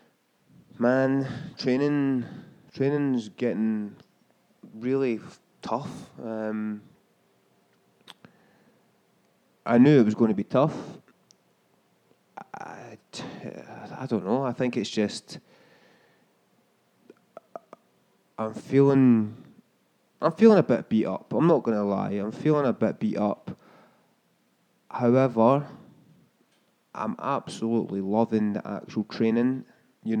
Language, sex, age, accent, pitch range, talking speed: English, male, 20-39, British, 110-120 Hz, 95 wpm